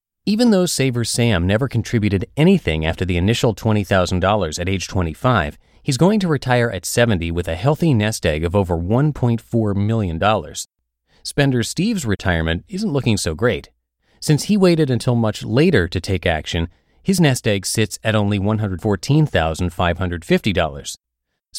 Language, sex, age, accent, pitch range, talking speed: English, male, 30-49, American, 90-125 Hz, 145 wpm